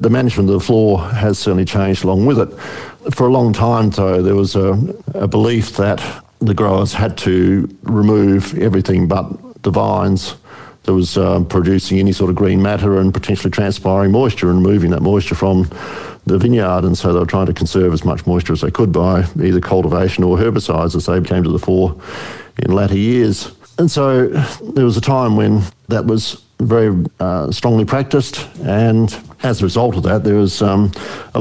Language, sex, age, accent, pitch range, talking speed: English, male, 50-69, Australian, 95-110 Hz, 195 wpm